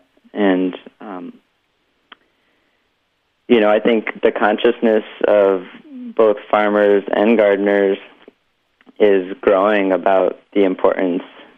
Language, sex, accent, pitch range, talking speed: English, male, American, 95-105 Hz, 95 wpm